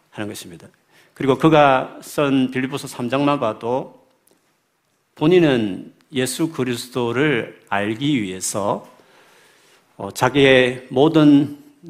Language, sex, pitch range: Korean, male, 115-155 Hz